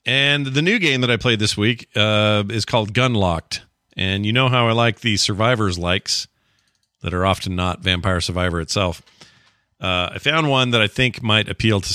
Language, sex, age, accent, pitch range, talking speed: English, male, 40-59, American, 90-115 Hz, 195 wpm